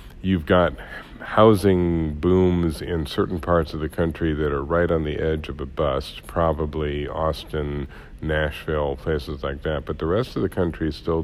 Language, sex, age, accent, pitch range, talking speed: English, male, 60-79, American, 75-85 Hz, 175 wpm